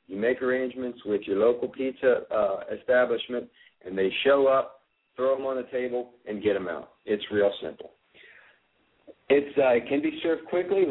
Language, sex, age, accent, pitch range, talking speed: English, male, 50-69, American, 115-150 Hz, 170 wpm